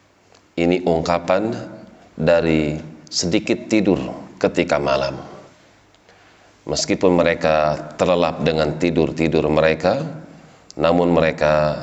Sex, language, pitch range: male, Indonesian, 80-90 Hz